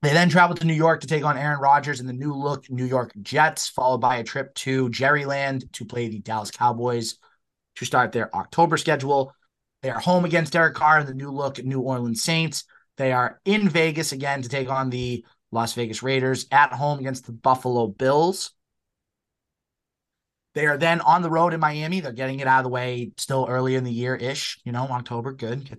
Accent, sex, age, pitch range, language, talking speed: American, male, 20-39, 125-160 Hz, English, 215 wpm